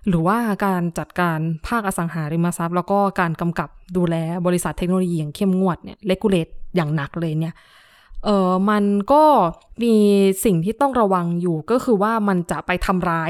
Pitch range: 175-210 Hz